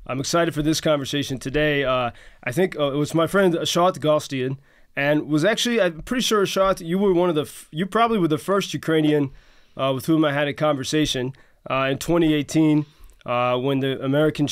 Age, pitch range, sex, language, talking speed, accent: 20-39, 140-165 Hz, male, English, 205 wpm, American